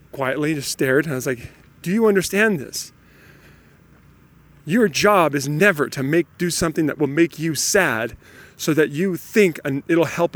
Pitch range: 145-195 Hz